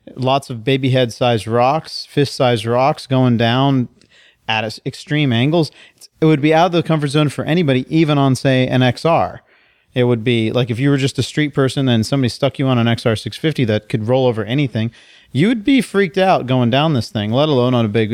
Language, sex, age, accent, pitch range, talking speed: English, male, 40-59, American, 110-140 Hz, 210 wpm